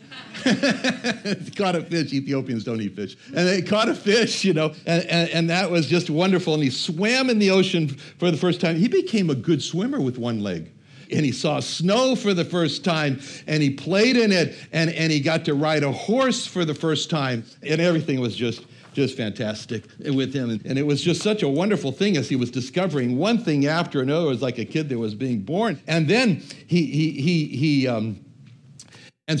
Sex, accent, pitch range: male, American, 145-195 Hz